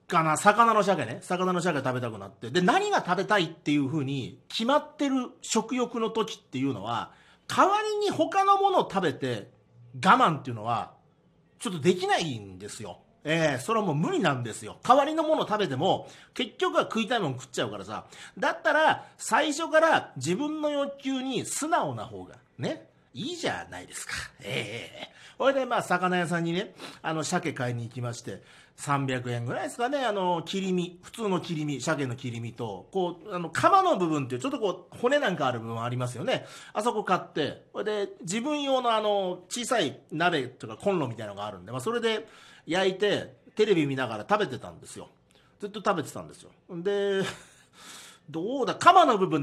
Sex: male